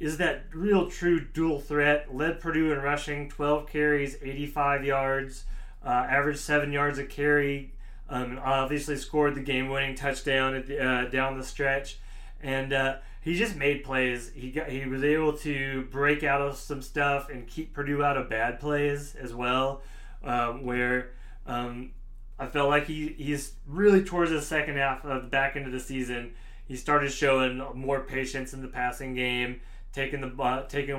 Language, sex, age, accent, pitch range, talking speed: English, male, 20-39, American, 130-145 Hz, 175 wpm